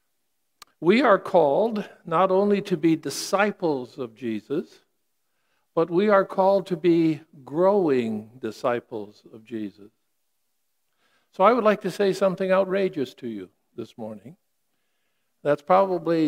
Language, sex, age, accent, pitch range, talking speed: English, male, 60-79, American, 140-185 Hz, 125 wpm